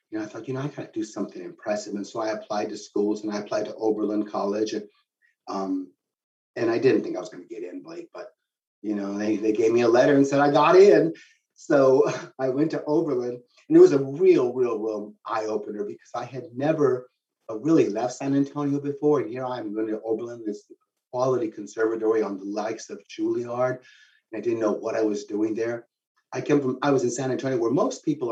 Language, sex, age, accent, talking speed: English, male, 40-59, American, 225 wpm